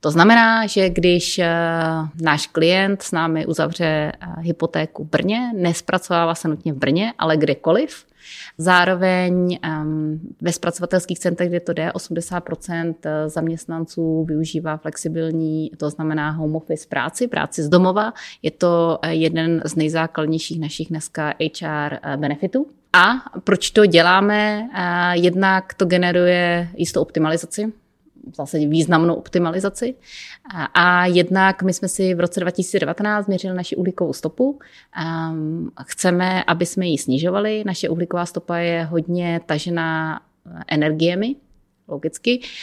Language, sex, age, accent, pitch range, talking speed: Czech, female, 30-49, native, 160-185 Hz, 120 wpm